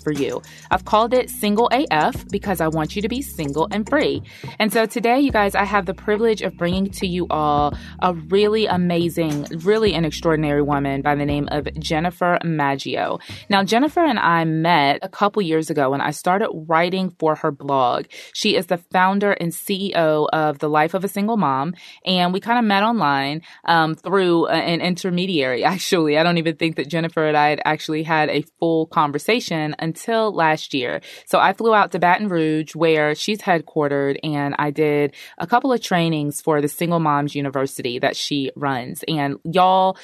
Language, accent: English, American